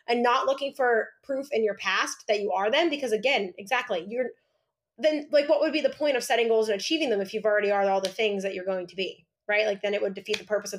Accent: American